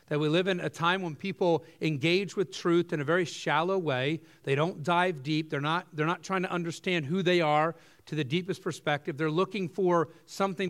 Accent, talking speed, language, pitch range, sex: American, 215 wpm, English, 150-185 Hz, male